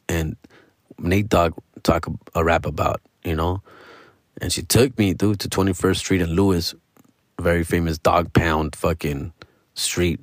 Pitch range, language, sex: 90-130 Hz, English, male